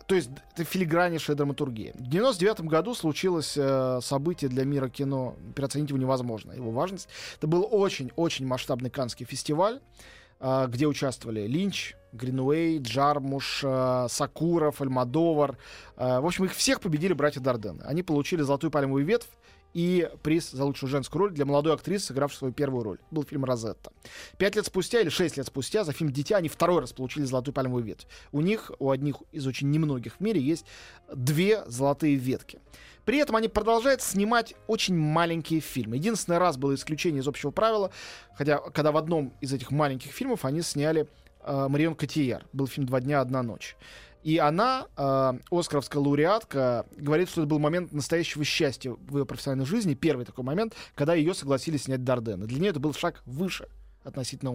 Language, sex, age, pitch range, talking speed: Russian, male, 20-39, 130-165 Hz, 175 wpm